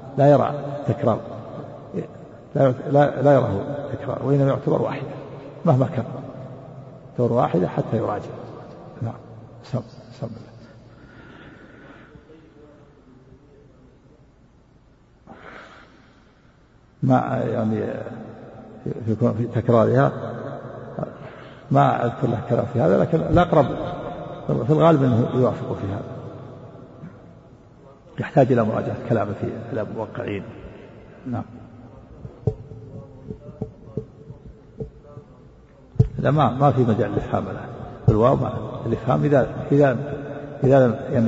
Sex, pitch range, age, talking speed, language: male, 115-140 Hz, 50-69, 95 wpm, Arabic